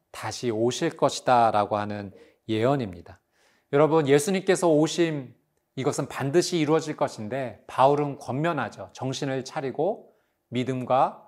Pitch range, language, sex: 125-165 Hz, Korean, male